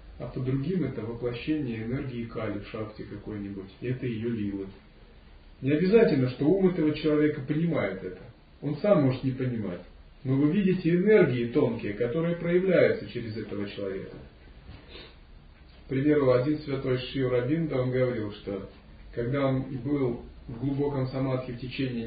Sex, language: male, Russian